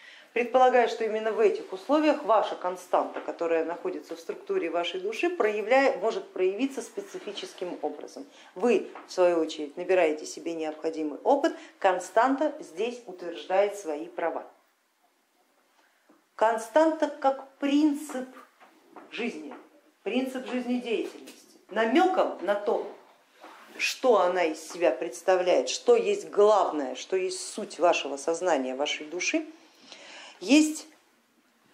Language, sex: Russian, female